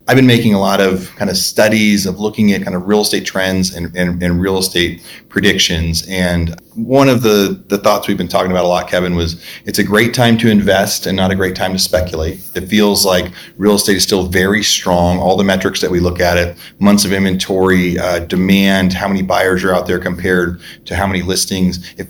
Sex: male